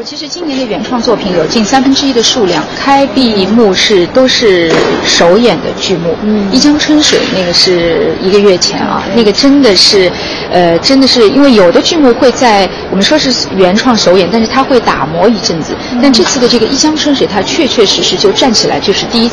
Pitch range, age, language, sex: 195-275 Hz, 30-49, Chinese, female